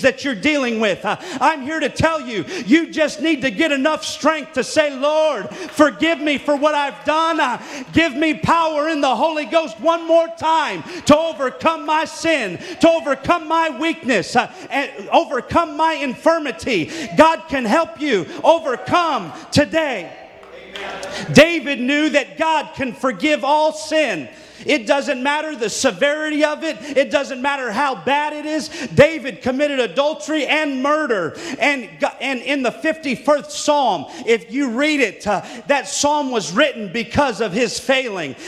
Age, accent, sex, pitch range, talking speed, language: 40-59, American, male, 260-310 Hz, 155 wpm, English